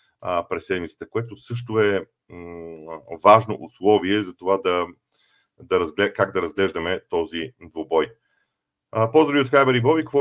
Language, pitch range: Bulgarian, 105-135 Hz